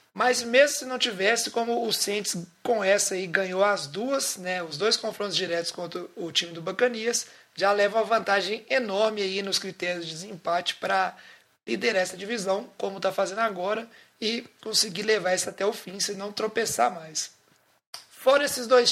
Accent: Brazilian